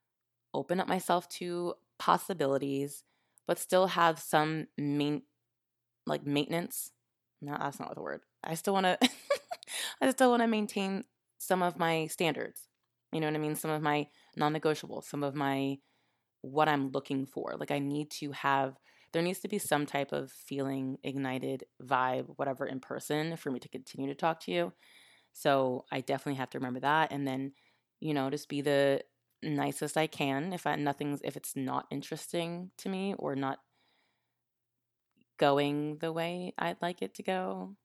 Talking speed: 170 wpm